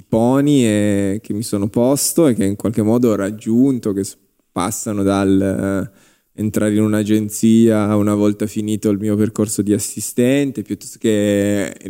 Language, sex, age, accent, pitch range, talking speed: Italian, male, 20-39, native, 100-115 Hz, 145 wpm